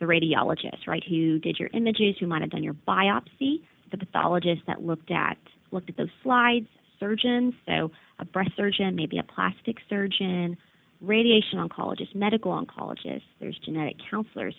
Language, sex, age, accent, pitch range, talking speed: English, female, 30-49, American, 170-220 Hz, 155 wpm